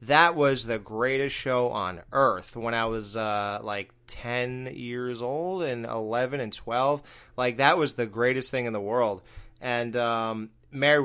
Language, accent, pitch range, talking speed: English, American, 115-145 Hz, 170 wpm